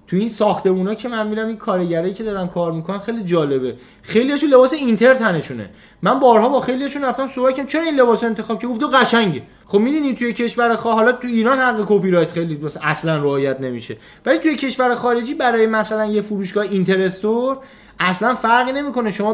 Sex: male